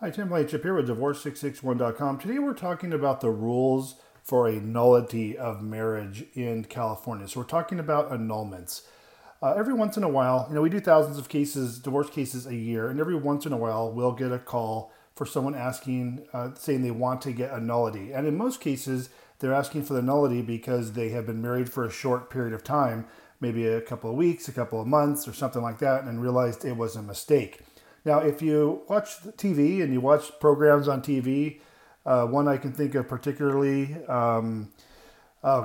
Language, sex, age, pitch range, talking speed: English, male, 40-59, 120-145 Hz, 205 wpm